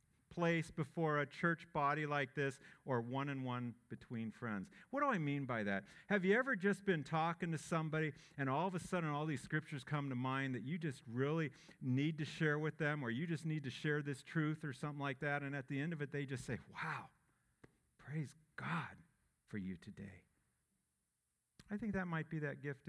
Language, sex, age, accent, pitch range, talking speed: English, male, 50-69, American, 135-185 Hz, 205 wpm